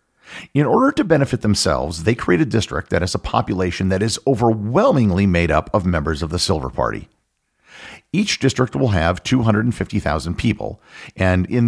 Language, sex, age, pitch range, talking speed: English, male, 50-69, 90-130 Hz, 165 wpm